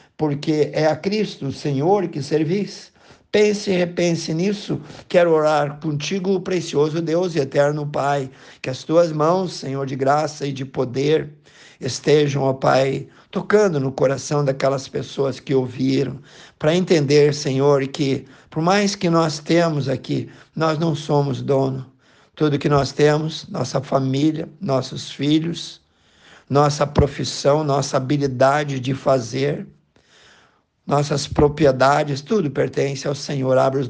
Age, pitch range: 50-69, 135-160 Hz